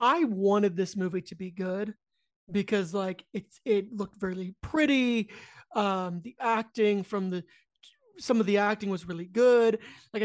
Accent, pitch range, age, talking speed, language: American, 190-230 Hz, 30-49, 160 wpm, English